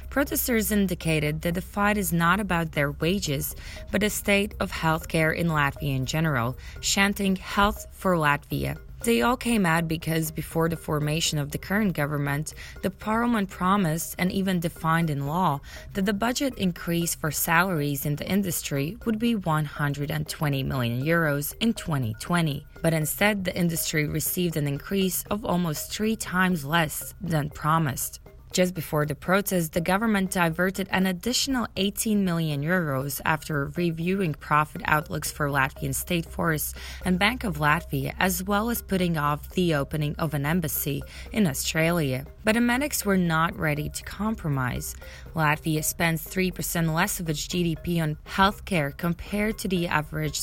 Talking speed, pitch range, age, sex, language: 155 wpm, 150-195 Hz, 20-39, female, English